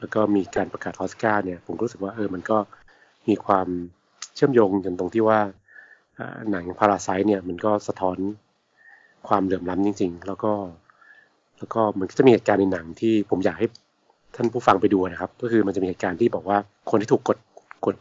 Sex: male